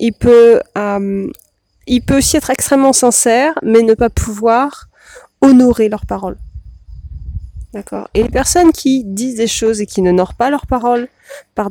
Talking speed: 160 wpm